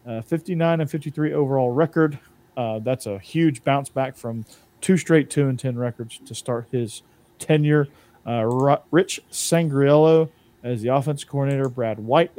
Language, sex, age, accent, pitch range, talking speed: English, male, 40-59, American, 120-150 Hz, 155 wpm